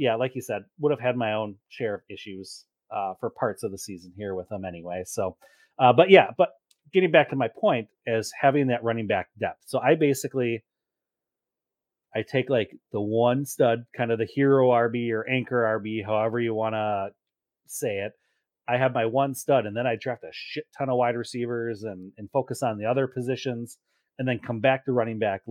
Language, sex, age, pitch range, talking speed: English, male, 30-49, 105-130 Hz, 210 wpm